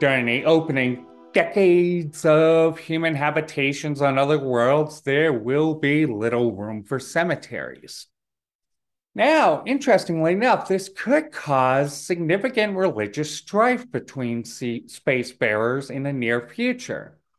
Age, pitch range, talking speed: 30-49, 120-160 Hz, 115 wpm